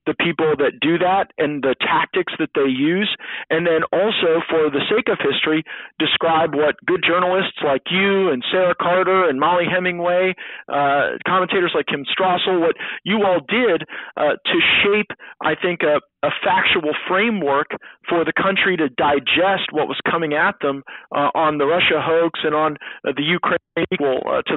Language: English